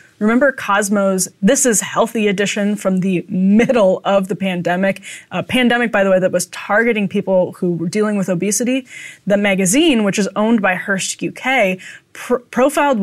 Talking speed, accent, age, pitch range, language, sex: 160 wpm, American, 10-29, 190-245 Hz, English, female